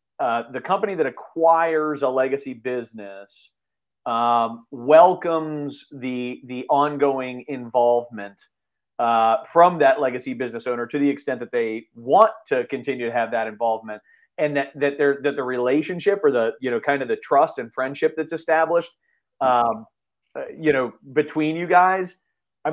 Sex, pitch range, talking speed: male, 115-165 Hz, 155 wpm